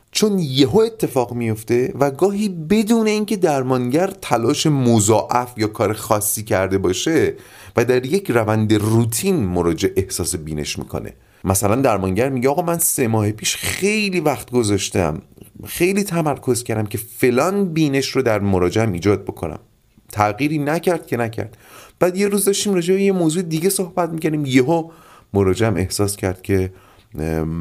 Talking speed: 150 wpm